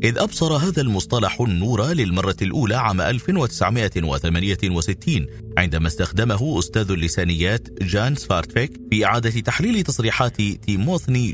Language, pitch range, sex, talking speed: Arabic, 95-130 Hz, male, 105 wpm